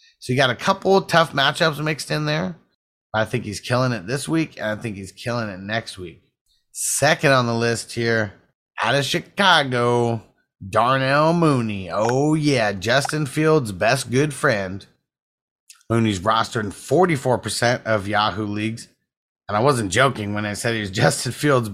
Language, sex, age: English, male, 30-49